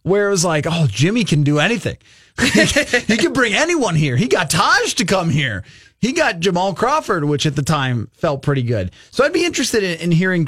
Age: 30-49